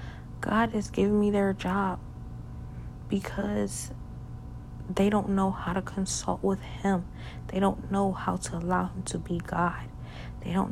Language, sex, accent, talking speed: English, female, American, 150 wpm